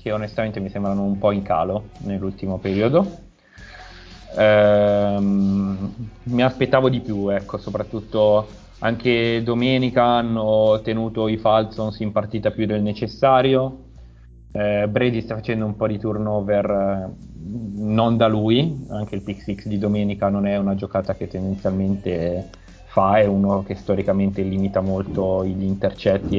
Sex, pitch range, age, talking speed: male, 100-115 Hz, 30-49, 135 wpm